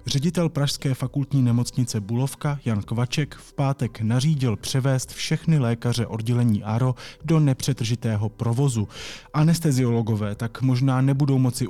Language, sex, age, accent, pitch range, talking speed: Czech, male, 20-39, native, 110-135 Hz, 120 wpm